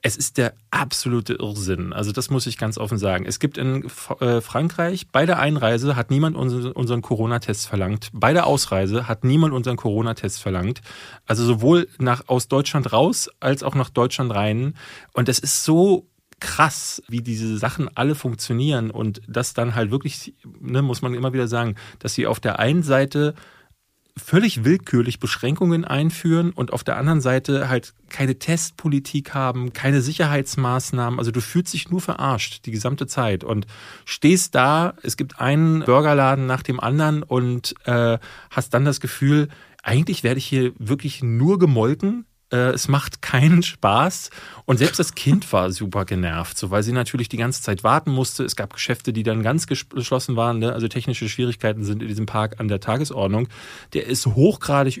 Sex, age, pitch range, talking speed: male, 30-49, 115-140 Hz, 175 wpm